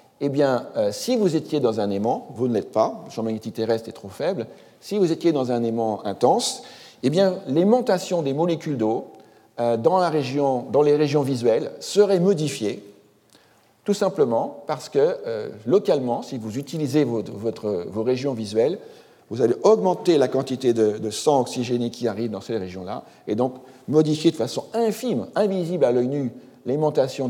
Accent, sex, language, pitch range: French, male, French, 115-170 Hz